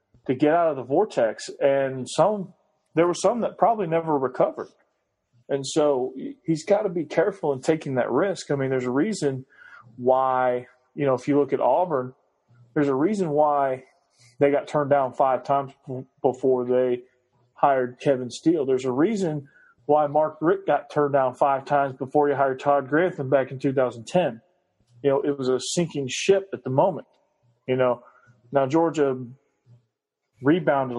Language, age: English, 40-59